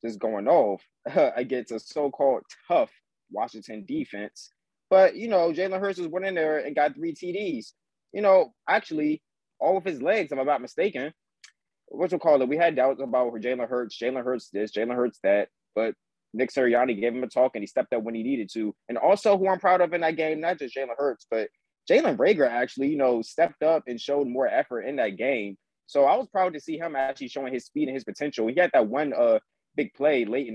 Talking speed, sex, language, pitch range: 230 wpm, male, English, 110-160 Hz